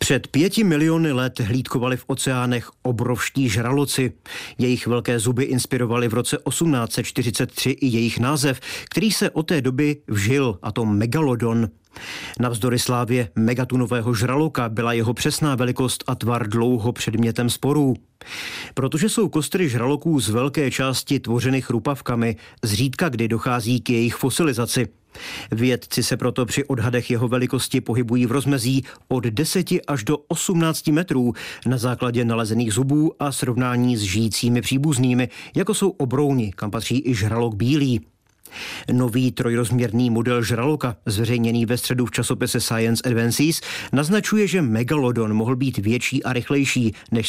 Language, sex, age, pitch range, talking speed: Czech, male, 40-59, 120-140 Hz, 140 wpm